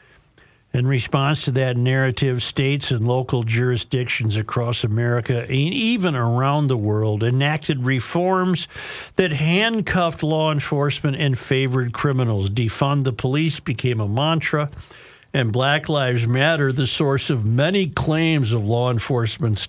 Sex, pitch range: male, 125-155 Hz